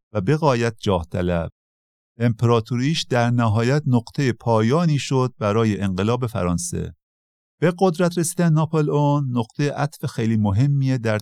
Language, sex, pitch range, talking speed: Persian, male, 100-140 Hz, 125 wpm